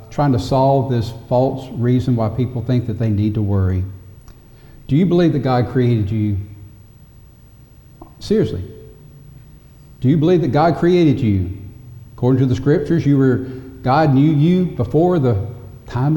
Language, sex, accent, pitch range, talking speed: English, male, American, 110-140 Hz, 150 wpm